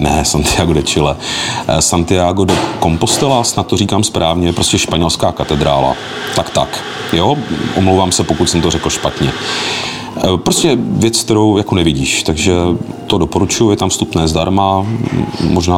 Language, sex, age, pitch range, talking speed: Czech, male, 40-59, 80-95 Hz, 145 wpm